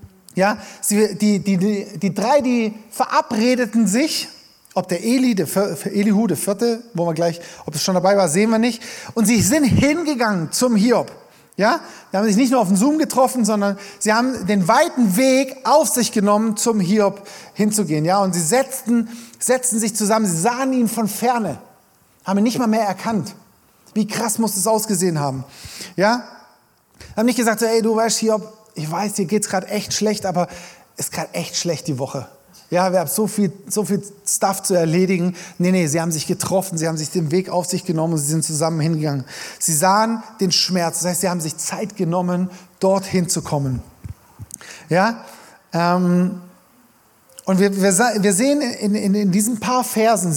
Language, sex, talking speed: German, male, 190 wpm